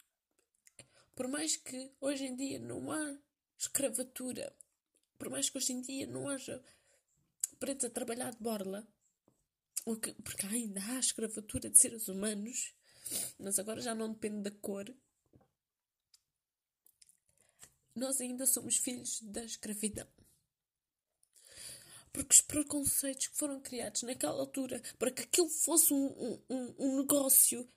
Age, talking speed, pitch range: 20-39, 125 wpm, 225-275 Hz